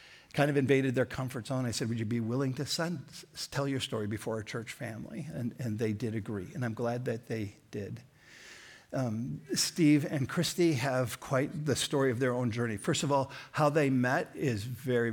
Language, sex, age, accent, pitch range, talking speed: English, male, 60-79, American, 120-145 Hz, 205 wpm